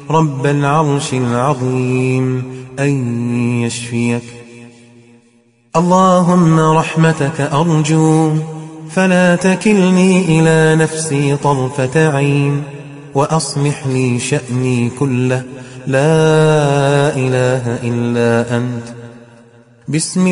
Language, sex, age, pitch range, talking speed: English, male, 30-49, 125-160 Hz, 65 wpm